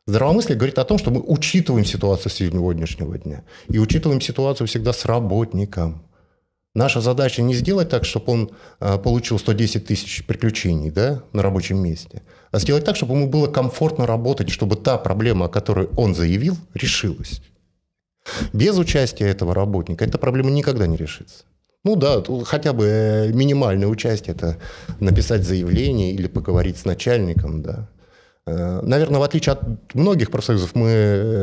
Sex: male